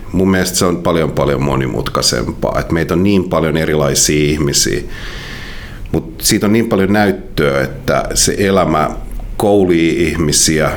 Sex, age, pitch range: male, 50-69, 75-95 Hz